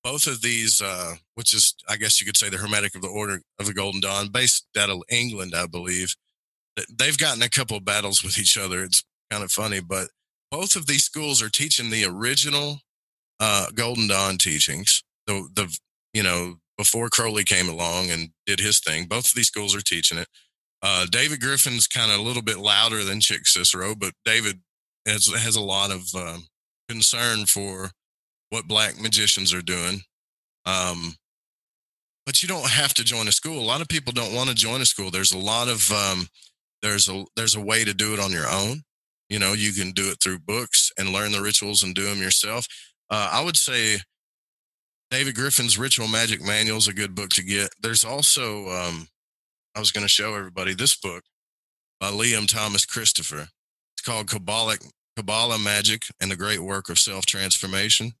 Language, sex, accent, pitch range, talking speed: English, male, American, 95-115 Hz, 195 wpm